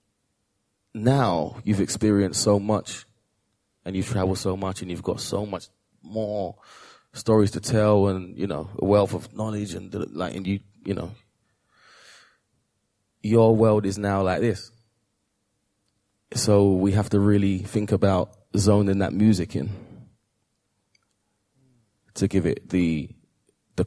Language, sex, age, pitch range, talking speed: English, male, 20-39, 90-105 Hz, 135 wpm